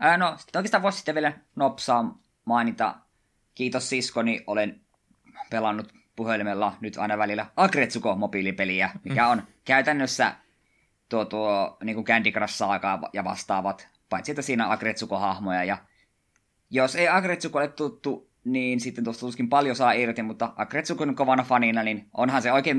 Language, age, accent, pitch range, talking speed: Finnish, 20-39, native, 100-125 Hz, 140 wpm